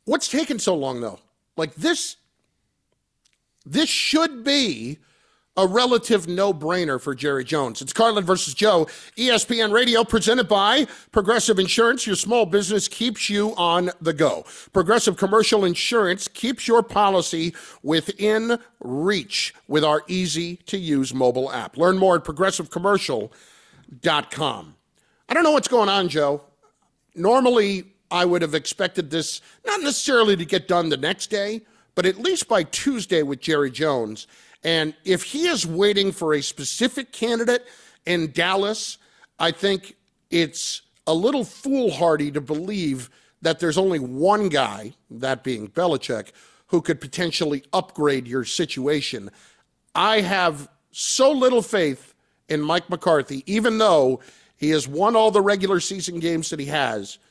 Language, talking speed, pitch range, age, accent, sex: English, 140 wpm, 160-225 Hz, 50-69, American, male